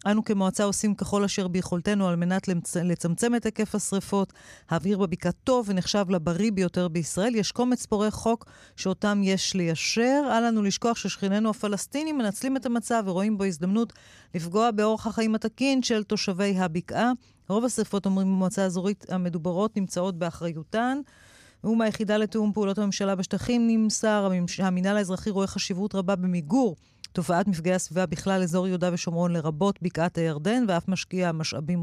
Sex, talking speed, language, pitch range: female, 150 wpm, Hebrew, 175-210 Hz